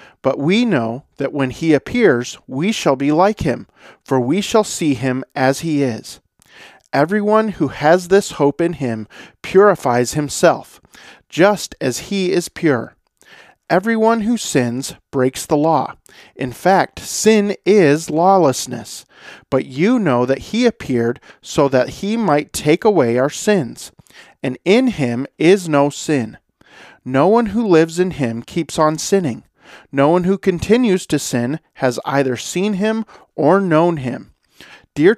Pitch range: 130-195 Hz